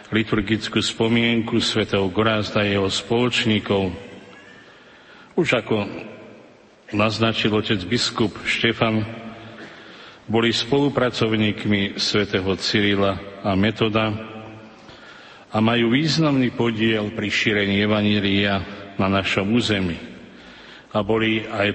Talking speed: 90 wpm